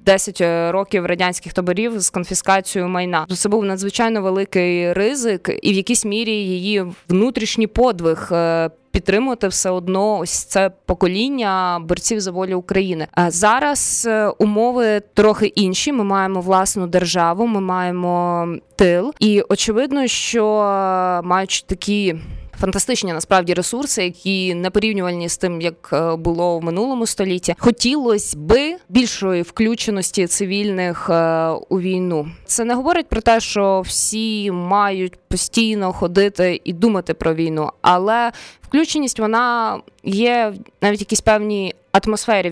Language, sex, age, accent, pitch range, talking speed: Ukrainian, female, 20-39, native, 180-215 Hz, 125 wpm